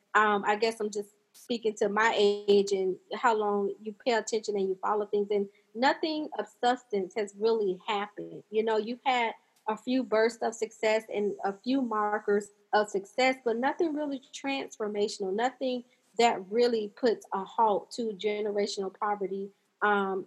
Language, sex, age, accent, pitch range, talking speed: English, female, 30-49, American, 200-225 Hz, 165 wpm